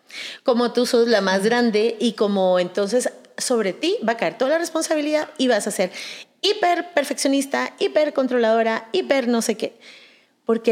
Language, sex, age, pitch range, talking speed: Spanish, female, 40-59, 195-260 Hz, 155 wpm